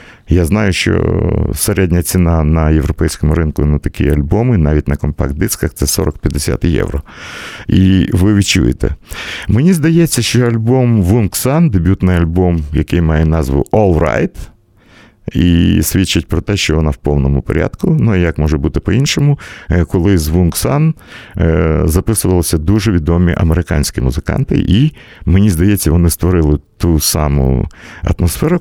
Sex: male